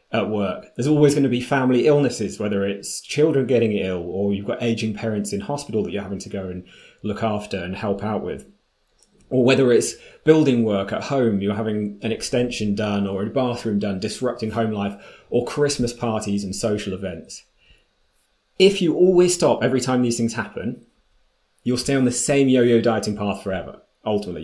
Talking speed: 190 wpm